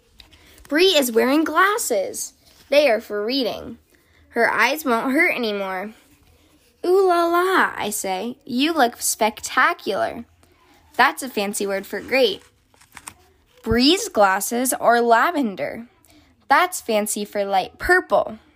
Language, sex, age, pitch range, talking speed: English, female, 10-29, 210-305 Hz, 115 wpm